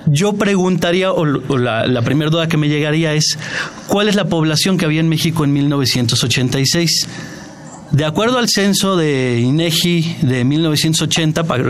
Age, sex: 40-59, male